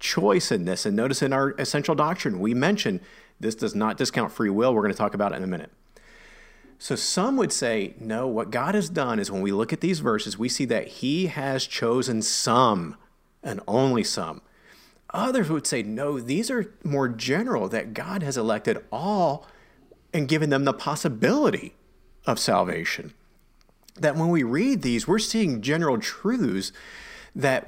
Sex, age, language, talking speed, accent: male, 40-59, English, 180 wpm, American